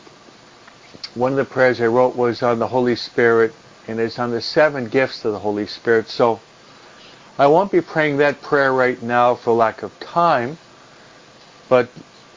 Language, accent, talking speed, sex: English, American, 170 wpm, male